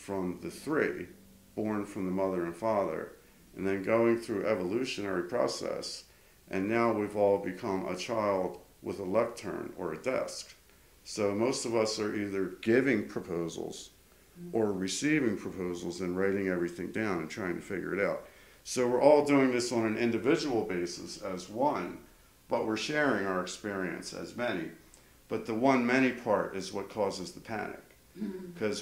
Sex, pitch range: male, 90-115 Hz